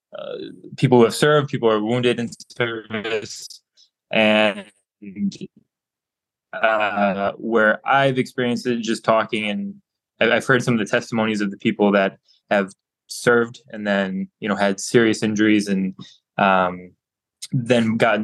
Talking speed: 140 wpm